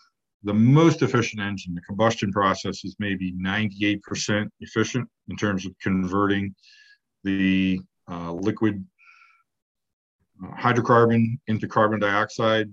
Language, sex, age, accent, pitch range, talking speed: English, male, 50-69, American, 90-110 Hz, 105 wpm